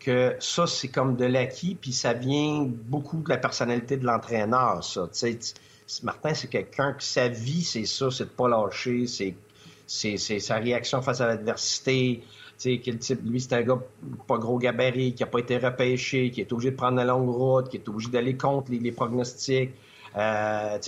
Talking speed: 210 wpm